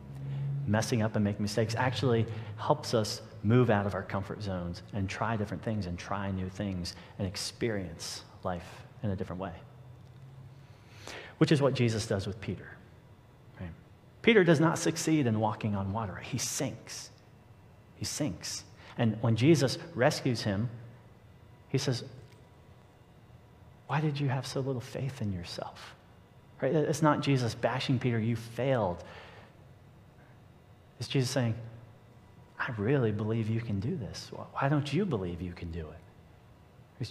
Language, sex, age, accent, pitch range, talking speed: English, male, 40-59, American, 105-125 Hz, 150 wpm